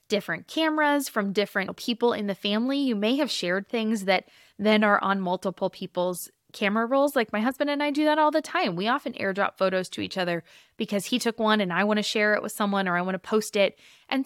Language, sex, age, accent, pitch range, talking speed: English, female, 20-39, American, 190-255 Hz, 240 wpm